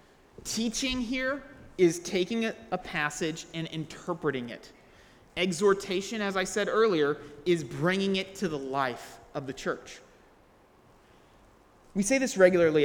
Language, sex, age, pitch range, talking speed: English, male, 30-49, 155-225 Hz, 125 wpm